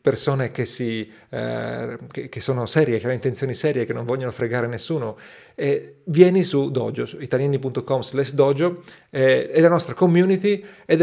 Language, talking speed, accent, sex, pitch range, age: Italian, 160 wpm, native, male, 125-155 Hz, 40-59